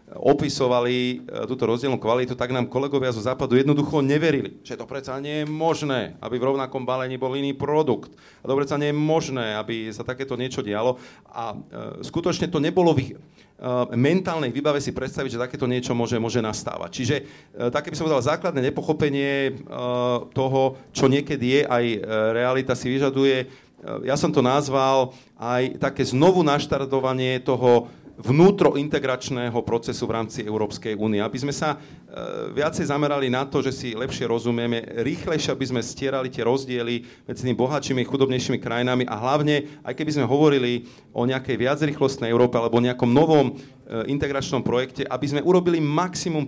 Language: Slovak